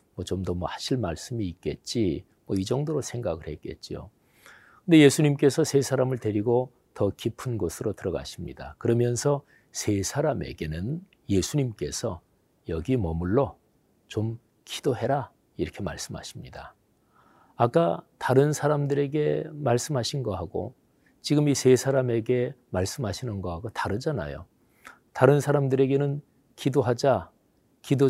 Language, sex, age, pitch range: Korean, male, 40-59, 105-145 Hz